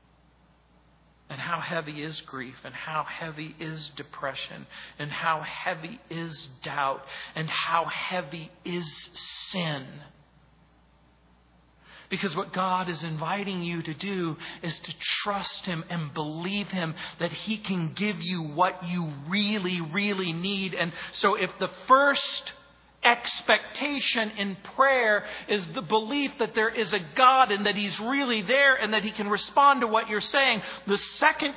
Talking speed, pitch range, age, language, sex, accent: 145 wpm, 175-240 Hz, 40-59, English, male, American